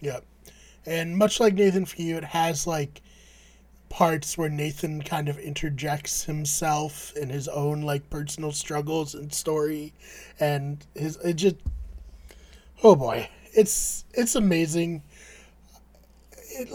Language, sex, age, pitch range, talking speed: English, male, 20-39, 145-190 Hz, 130 wpm